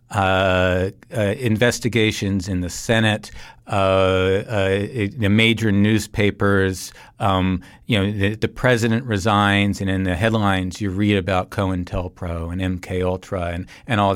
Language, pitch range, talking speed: English, 95-110 Hz, 130 wpm